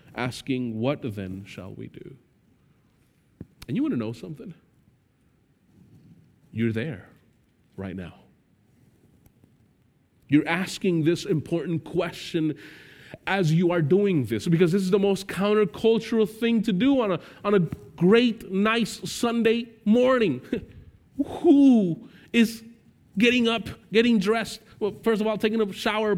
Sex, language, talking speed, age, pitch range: male, English, 125 wpm, 30-49, 130-215 Hz